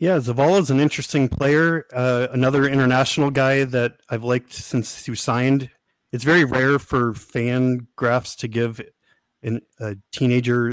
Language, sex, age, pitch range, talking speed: English, male, 30-49, 120-135 Hz, 155 wpm